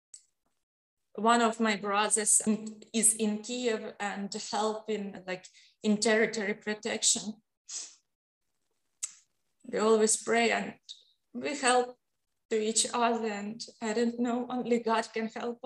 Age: 20-39